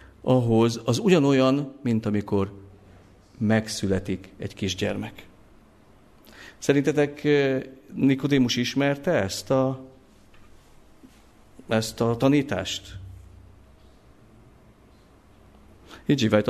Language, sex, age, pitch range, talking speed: Hungarian, male, 50-69, 105-140 Hz, 55 wpm